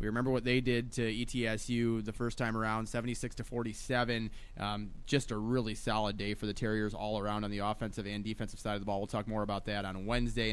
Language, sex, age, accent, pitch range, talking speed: English, male, 20-39, American, 110-140 Hz, 230 wpm